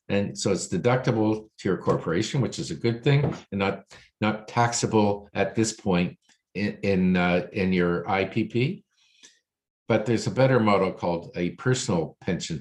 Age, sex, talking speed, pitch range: 50-69, male, 160 wpm, 95-120 Hz